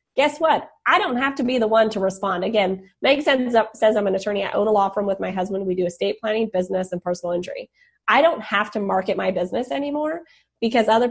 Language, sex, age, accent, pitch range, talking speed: English, female, 20-39, American, 190-235 Hz, 230 wpm